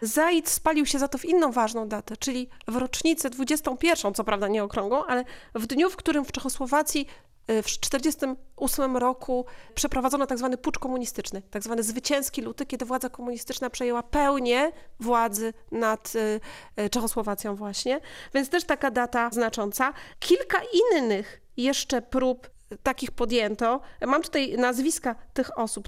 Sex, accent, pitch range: female, native, 230-280 Hz